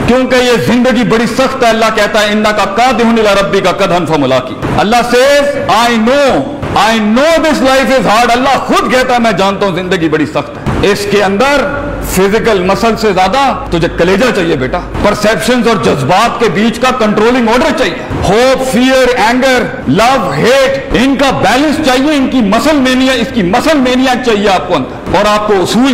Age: 50-69